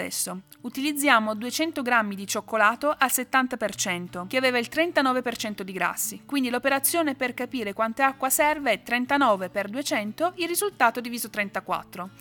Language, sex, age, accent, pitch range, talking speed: Italian, female, 30-49, native, 210-290 Hz, 145 wpm